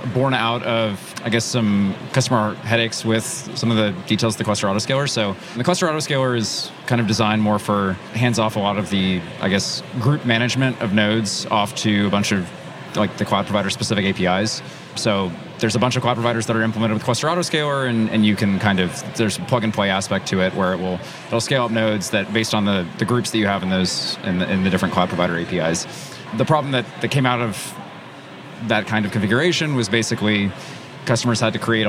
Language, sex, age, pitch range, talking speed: English, male, 30-49, 105-125 Hz, 225 wpm